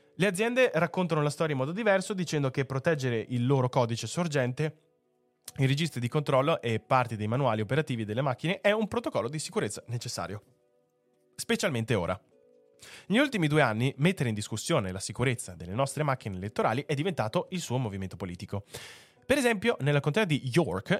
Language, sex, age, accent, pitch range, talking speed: Italian, male, 20-39, native, 115-160 Hz, 170 wpm